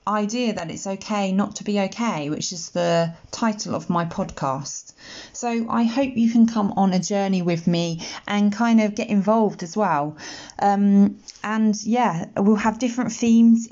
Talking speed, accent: 175 wpm, British